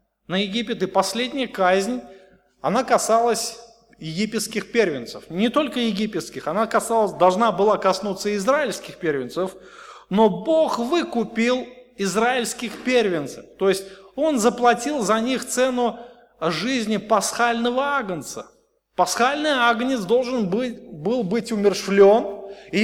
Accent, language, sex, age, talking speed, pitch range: native, Russian, male, 20-39, 105 wpm, 210-270 Hz